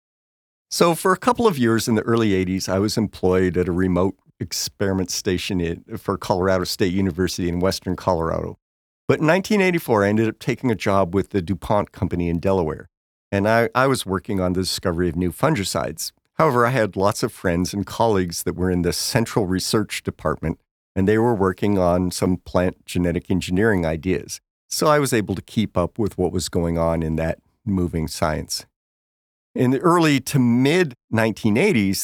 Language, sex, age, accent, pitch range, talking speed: English, male, 50-69, American, 90-115 Hz, 180 wpm